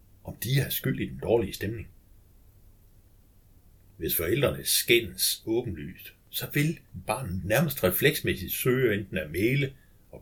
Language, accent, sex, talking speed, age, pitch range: Danish, native, male, 130 wpm, 60-79, 95-115 Hz